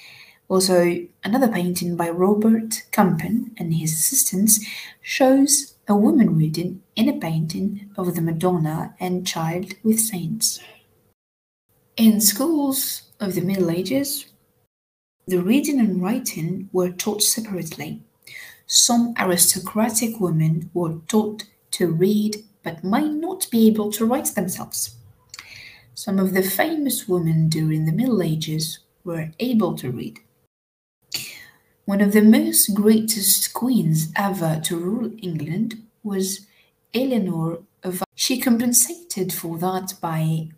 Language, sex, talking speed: English, female, 120 wpm